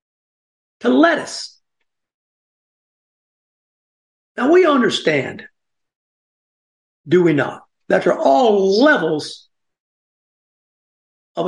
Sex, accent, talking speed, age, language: male, American, 75 wpm, 60-79, English